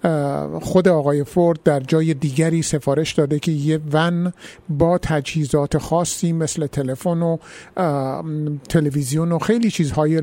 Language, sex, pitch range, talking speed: Persian, male, 145-175 Hz, 125 wpm